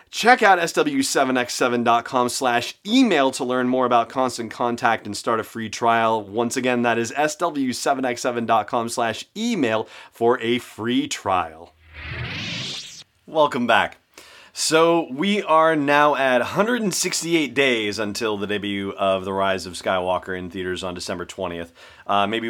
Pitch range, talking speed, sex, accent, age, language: 100-130 Hz, 130 wpm, male, American, 30-49, English